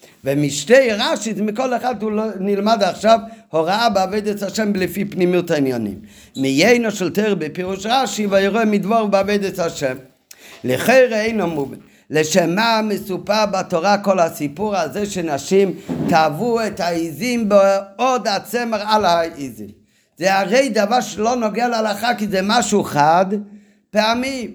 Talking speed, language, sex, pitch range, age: 130 wpm, Hebrew, male, 180-235 Hz, 50-69